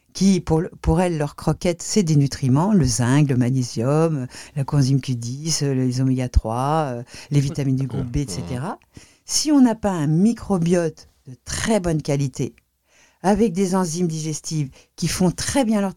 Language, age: French, 60-79